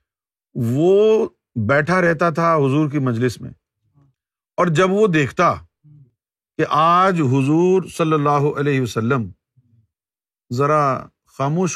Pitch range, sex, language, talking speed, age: 125-170 Hz, male, Urdu, 105 wpm, 50-69